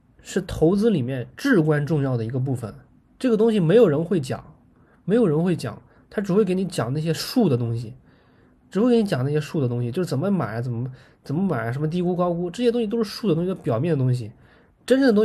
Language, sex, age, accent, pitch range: Chinese, male, 20-39, native, 130-190 Hz